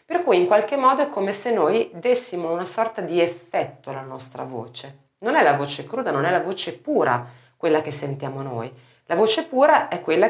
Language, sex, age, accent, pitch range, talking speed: Italian, female, 30-49, native, 135-200 Hz, 210 wpm